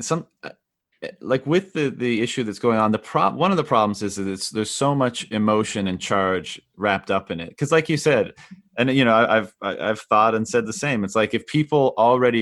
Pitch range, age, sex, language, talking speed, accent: 110-130 Hz, 30-49, male, English, 225 wpm, American